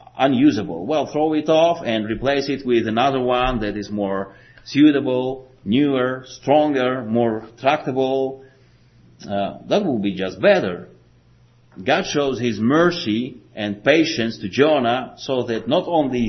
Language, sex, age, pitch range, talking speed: English, male, 40-59, 110-140 Hz, 135 wpm